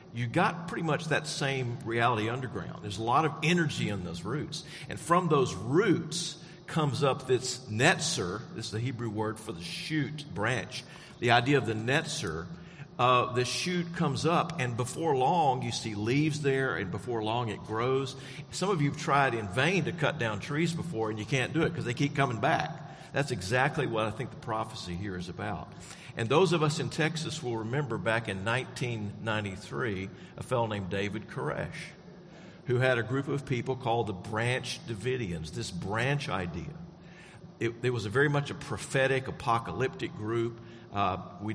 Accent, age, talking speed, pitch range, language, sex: American, 50-69, 185 wpm, 110-155 Hz, English, male